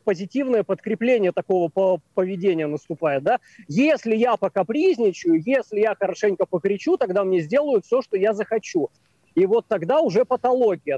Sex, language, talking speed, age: male, Russian, 135 wpm, 20-39